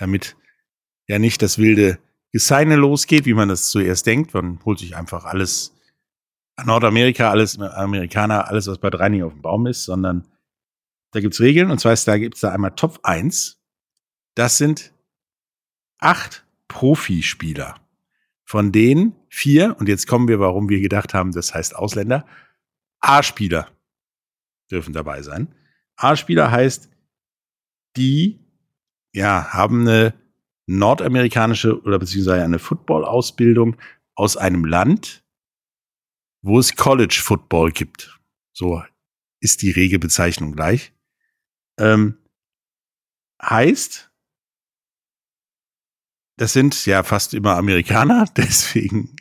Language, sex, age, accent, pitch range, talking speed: German, male, 50-69, German, 95-125 Hz, 120 wpm